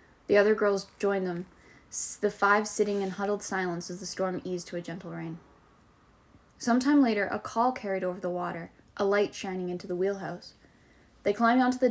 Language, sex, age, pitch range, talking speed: English, female, 10-29, 180-210 Hz, 185 wpm